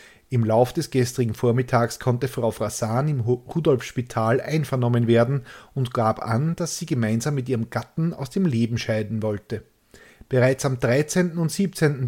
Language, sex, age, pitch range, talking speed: German, male, 30-49, 115-140 Hz, 155 wpm